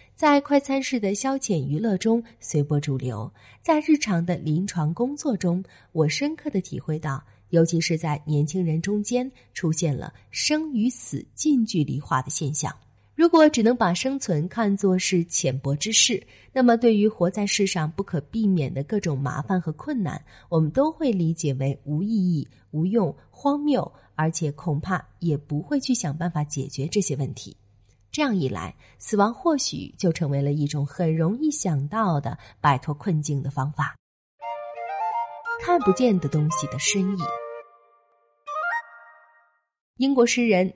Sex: female